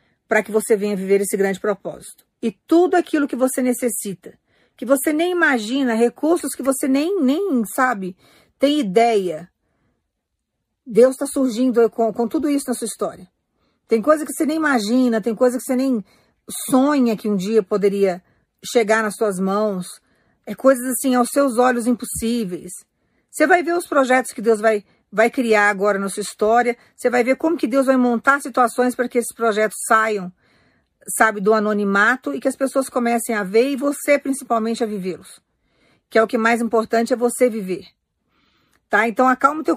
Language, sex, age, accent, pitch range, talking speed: Portuguese, female, 50-69, Brazilian, 215-265 Hz, 180 wpm